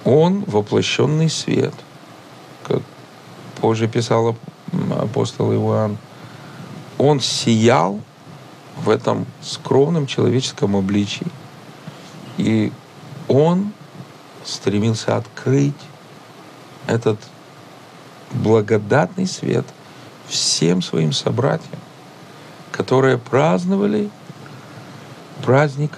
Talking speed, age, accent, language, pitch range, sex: 65 wpm, 50-69, native, Russian, 115-155 Hz, male